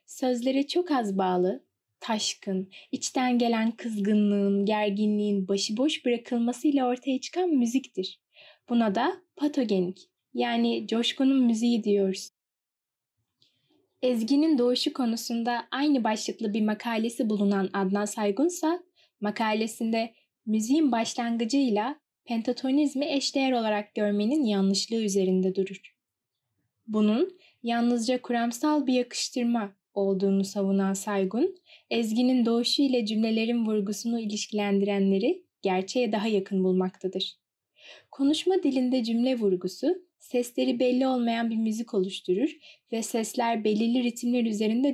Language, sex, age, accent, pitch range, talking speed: Turkish, female, 10-29, native, 205-265 Hz, 100 wpm